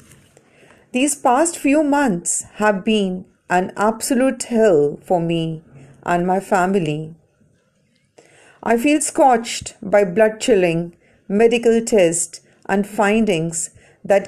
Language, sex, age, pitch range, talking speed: Punjabi, female, 50-69, 185-235 Hz, 105 wpm